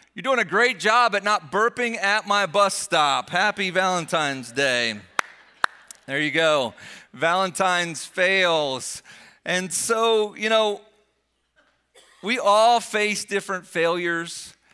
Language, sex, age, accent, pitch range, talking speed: English, male, 40-59, American, 135-185 Hz, 120 wpm